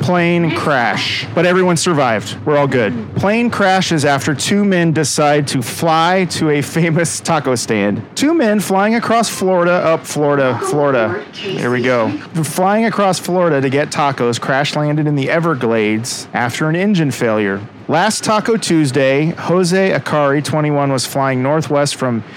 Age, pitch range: 40-59, 135-175 Hz